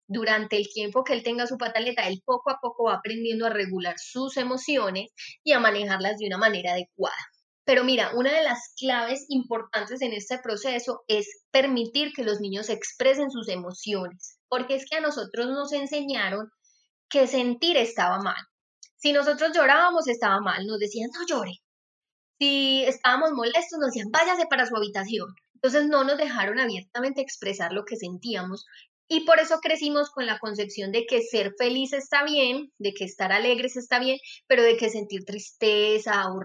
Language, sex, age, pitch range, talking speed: Spanish, female, 20-39, 210-275 Hz, 175 wpm